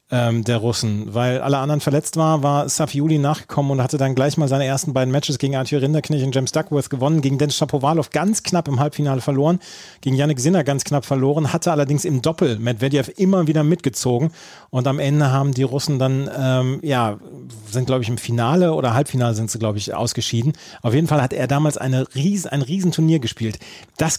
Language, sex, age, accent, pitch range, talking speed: German, male, 40-59, German, 125-155 Hz, 205 wpm